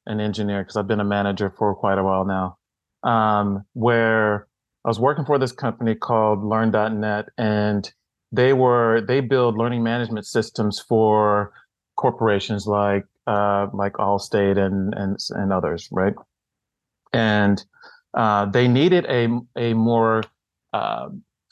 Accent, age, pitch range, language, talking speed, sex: American, 40-59, 105-120 Hz, English, 135 wpm, male